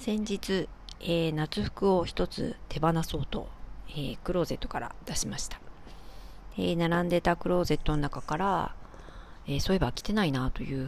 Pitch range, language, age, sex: 135-195 Hz, Japanese, 40-59, female